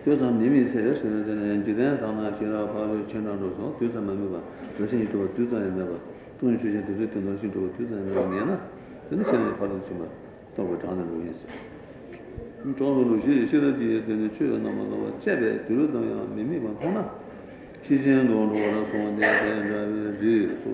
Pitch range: 100-120 Hz